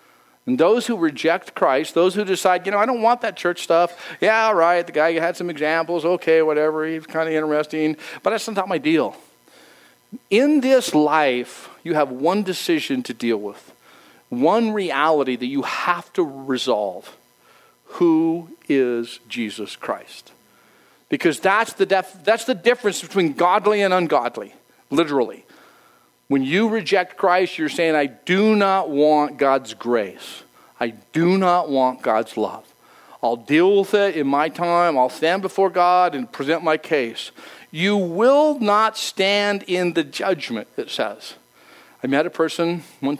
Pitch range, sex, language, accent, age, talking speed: 155-200 Hz, male, English, American, 50-69, 160 wpm